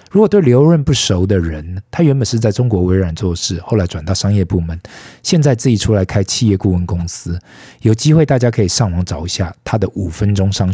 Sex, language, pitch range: male, Chinese, 90-120 Hz